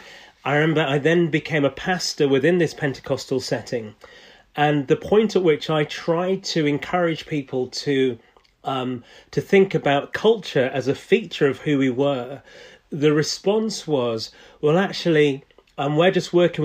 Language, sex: English, male